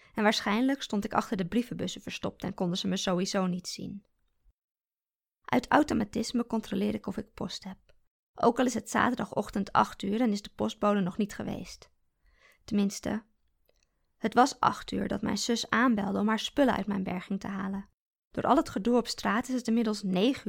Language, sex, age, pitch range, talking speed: Dutch, female, 20-39, 200-235 Hz, 185 wpm